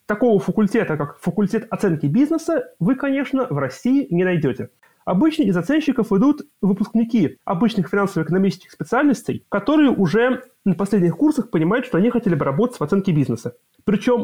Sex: male